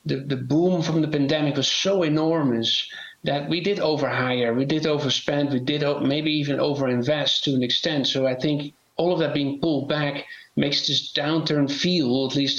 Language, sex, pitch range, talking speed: English, male, 135-155 Hz, 200 wpm